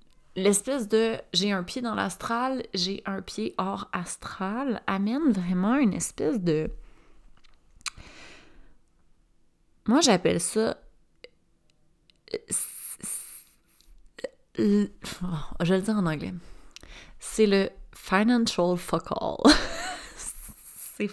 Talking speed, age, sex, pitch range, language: 90 wpm, 30-49, female, 180-230 Hz, French